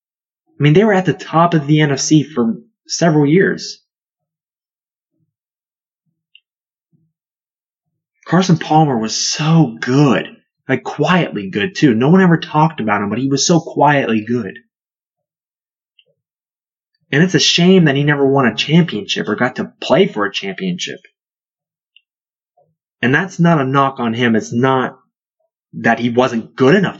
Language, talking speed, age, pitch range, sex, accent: English, 145 wpm, 20-39, 125-170 Hz, male, American